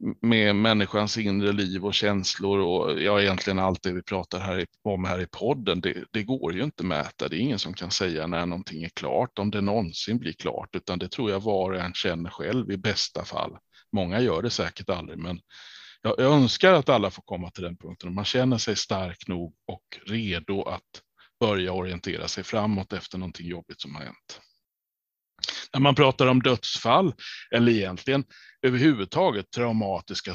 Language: Swedish